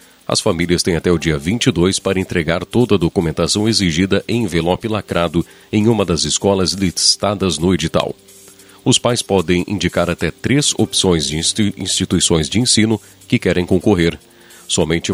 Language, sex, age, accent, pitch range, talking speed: Portuguese, male, 40-59, Brazilian, 85-105 Hz, 150 wpm